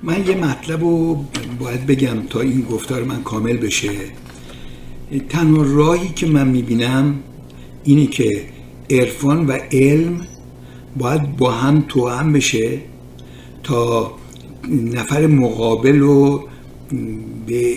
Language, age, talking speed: Persian, 60-79, 110 wpm